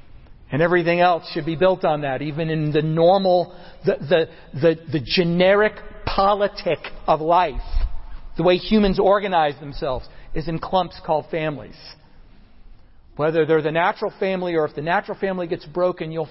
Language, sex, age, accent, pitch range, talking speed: English, male, 50-69, American, 150-185 Hz, 160 wpm